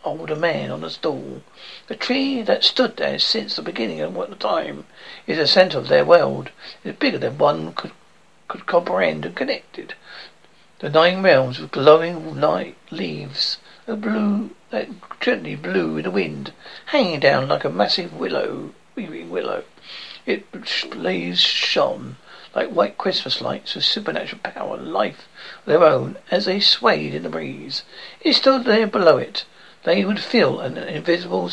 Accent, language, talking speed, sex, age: British, English, 160 wpm, male, 60-79